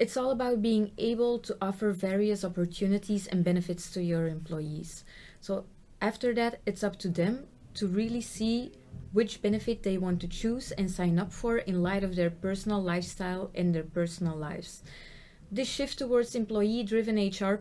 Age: 30-49